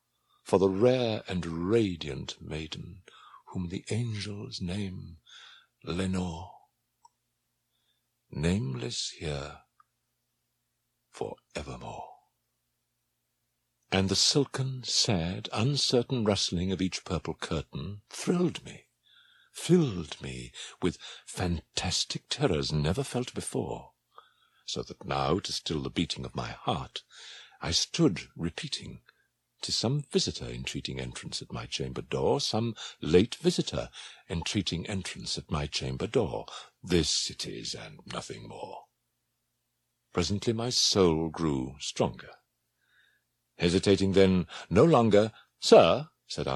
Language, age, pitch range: English, 60-79, 80-115 Hz